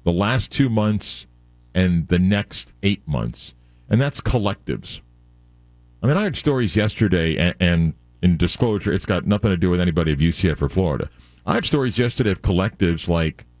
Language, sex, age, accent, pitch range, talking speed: English, male, 50-69, American, 80-110 Hz, 175 wpm